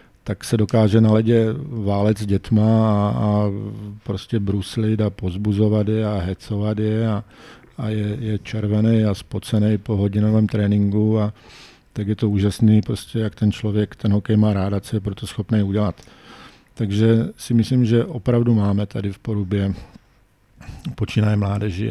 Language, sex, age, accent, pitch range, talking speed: Czech, male, 50-69, native, 100-110 Hz, 155 wpm